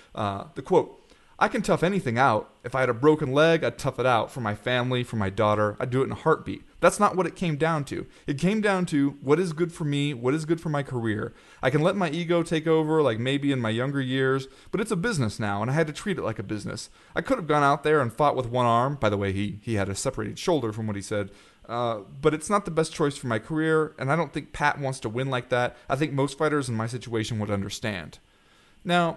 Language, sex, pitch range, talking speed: English, male, 110-160 Hz, 275 wpm